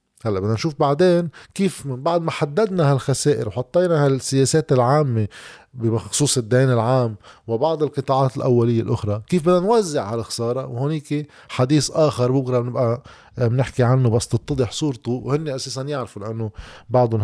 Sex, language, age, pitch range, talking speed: male, Arabic, 20-39, 110-145 Hz, 135 wpm